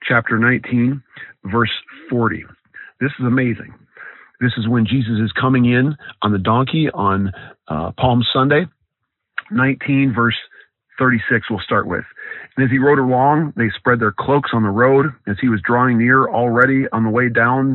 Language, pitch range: English, 105-125 Hz